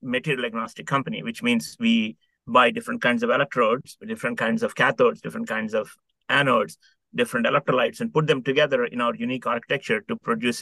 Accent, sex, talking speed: Indian, male, 175 wpm